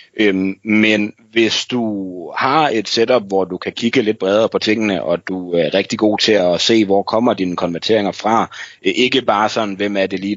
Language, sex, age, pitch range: Danish, male, 30-49, 95-110 Hz